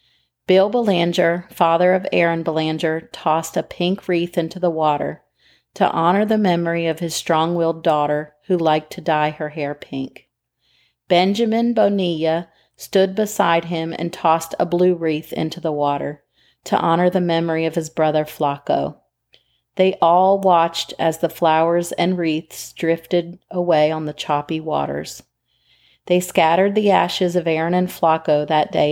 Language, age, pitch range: English, 40-59, 155-180 Hz